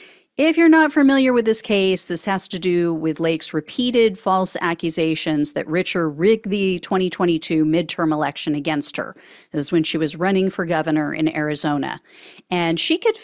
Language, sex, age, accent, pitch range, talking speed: English, female, 40-59, American, 175-270 Hz, 170 wpm